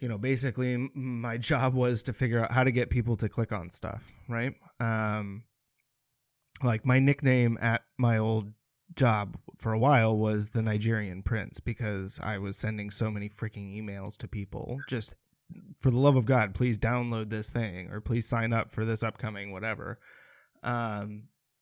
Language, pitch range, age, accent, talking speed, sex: English, 110-130 Hz, 20-39, American, 170 wpm, male